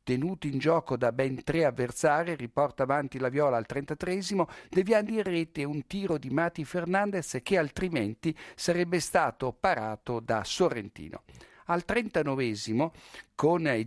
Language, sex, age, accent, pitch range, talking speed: Italian, male, 60-79, native, 115-160 Hz, 140 wpm